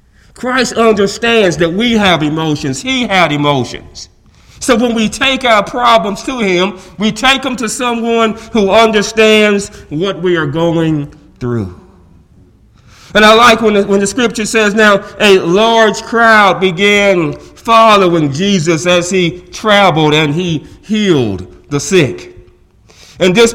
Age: 40-59